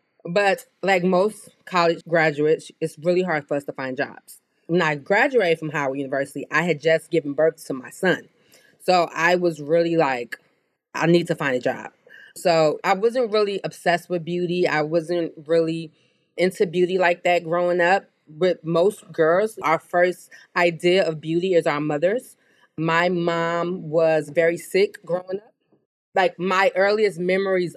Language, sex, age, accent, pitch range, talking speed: English, female, 20-39, American, 155-180 Hz, 165 wpm